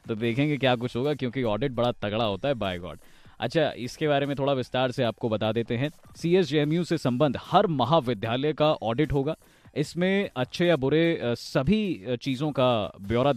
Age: 20-39